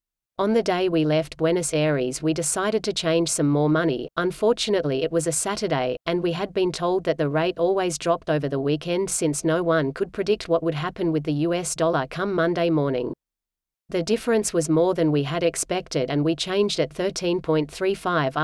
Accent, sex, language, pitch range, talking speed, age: Australian, female, English, 150-180 Hz, 195 wpm, 40-59